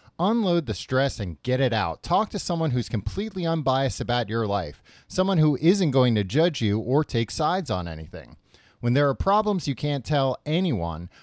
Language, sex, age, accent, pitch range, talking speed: English, male, 30-49, American, 105-150 Hz, 190 wpm